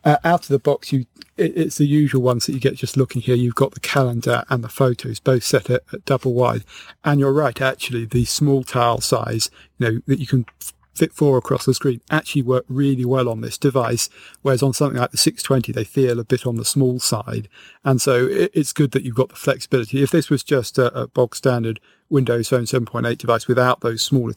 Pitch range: 120-135 Hz